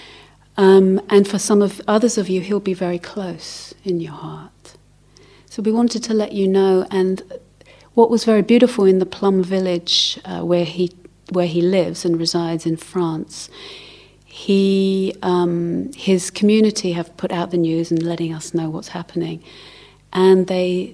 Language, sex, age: English, female, 40-59